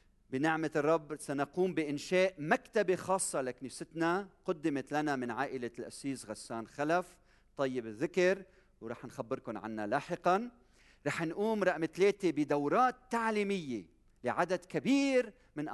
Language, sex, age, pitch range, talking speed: Arabic, male, 40-59, 130-190 Hz, 110 wpm